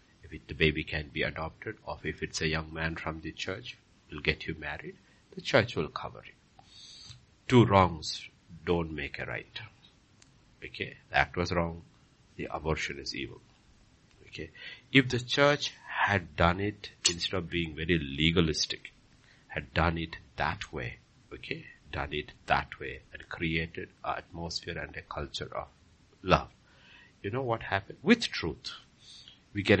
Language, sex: English, male